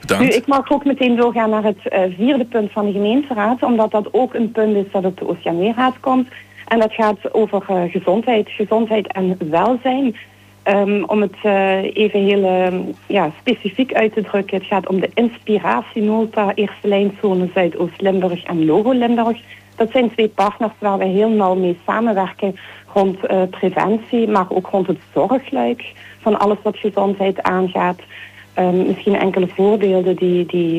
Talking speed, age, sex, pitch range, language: 150 wpm, 40-59, female, 185-225 Hz, Dutch